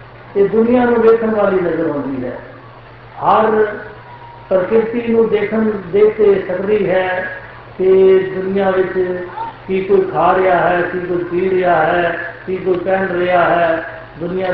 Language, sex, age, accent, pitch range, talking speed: Hindi, male, 60-79, native, 170-210 Hz, 120 wpm